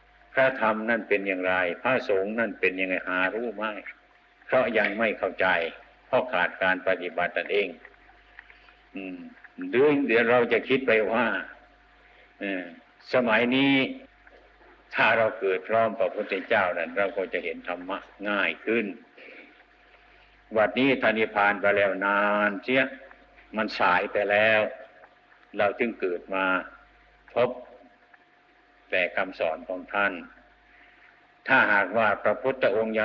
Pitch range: 95-120 Hz